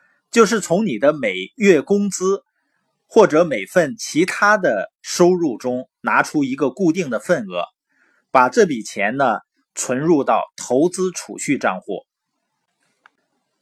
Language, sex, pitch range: Chinese, male, 150-240 Hz